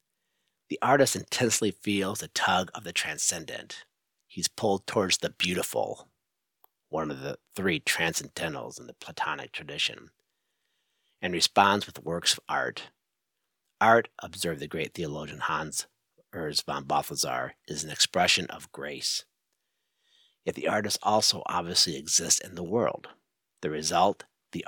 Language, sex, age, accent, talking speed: English, male, 50-69, American, 135 wpm